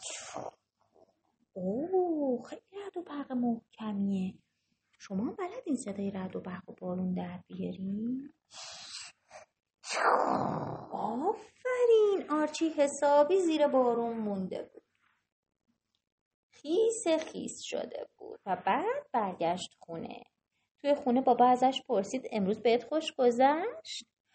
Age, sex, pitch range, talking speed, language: 30-49, female, 225-360 Hz, 100 wpm, Persian